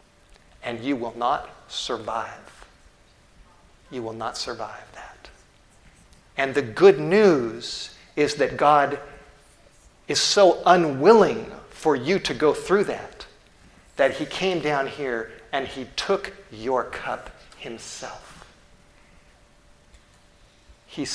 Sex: male